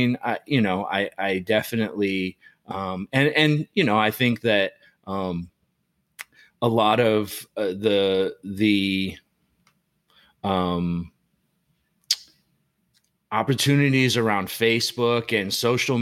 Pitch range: 100-115 Hz